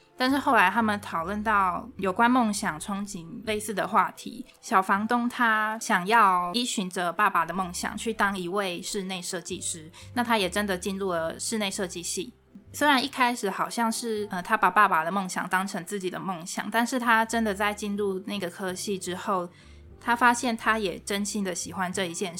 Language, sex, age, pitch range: Chinese, female, 20-39, 185-225 Hz